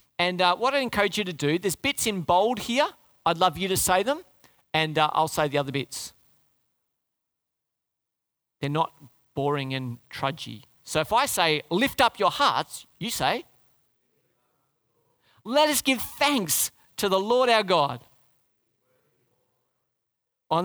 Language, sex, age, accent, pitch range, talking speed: English, male, 40-59, Australian, 145-220 Hz, 150 wpm